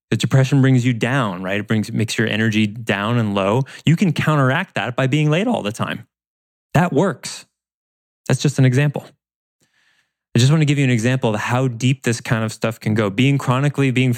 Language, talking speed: English, 210 wpm